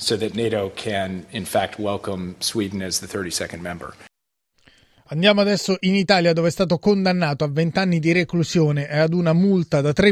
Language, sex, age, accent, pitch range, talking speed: Italian, male, 30-49, native, 150-180 Hz, 185 wpm